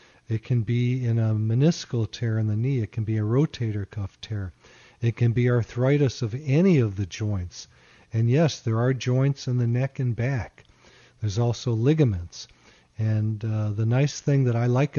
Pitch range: 110-125 Hz